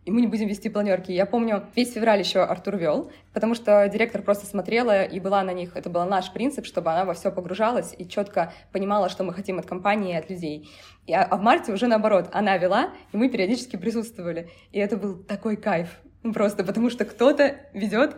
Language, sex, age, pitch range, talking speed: Russian, female, 20-39, 190-230 Hz, 210 wpm